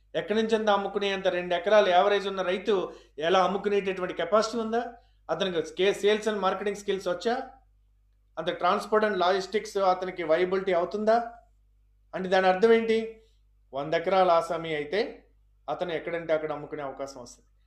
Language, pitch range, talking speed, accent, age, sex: Telugu, 150-200 Hz, 135 wpm, native, 30-49, male